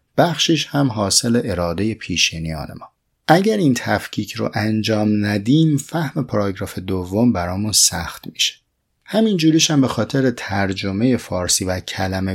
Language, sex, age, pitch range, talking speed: Persian, male, 30-49, 90-130 Hz, 125 wpm